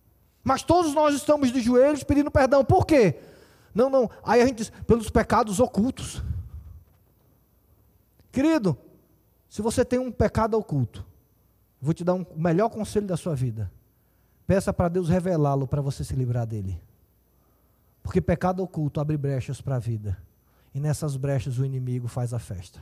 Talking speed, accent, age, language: 160 wpm, Brazilian, 20-39, Portuguese